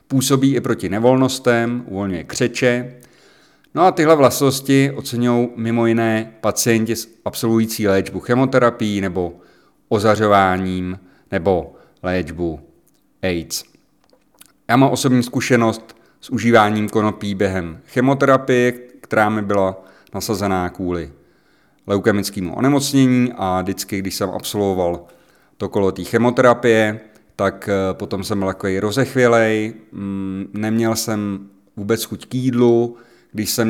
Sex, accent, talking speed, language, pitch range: male, native, 110 wpm, Czech, 100-115 Hz